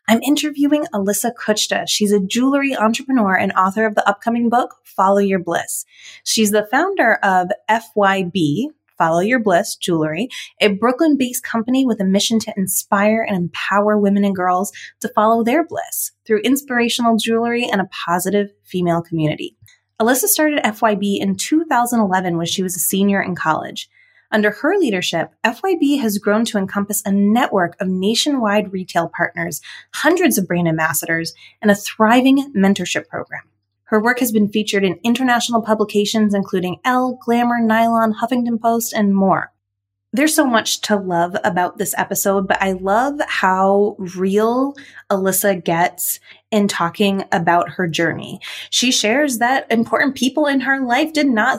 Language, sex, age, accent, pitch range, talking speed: English, female, 20-39, American, 190-245 Hz, 155 wpm